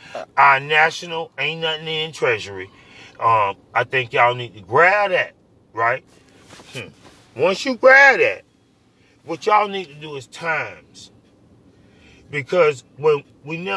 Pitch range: 125-195 Hz